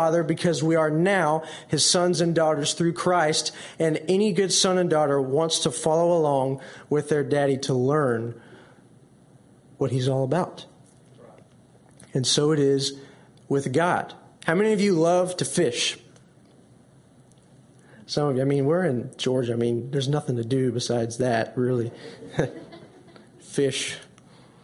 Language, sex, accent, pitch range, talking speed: English, male, American, 135-170 Hz, 145 wpm